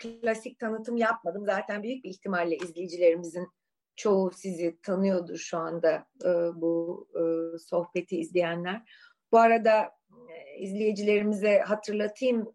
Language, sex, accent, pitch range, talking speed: Turkish, female, native, 170-225 Hz, 95 wpm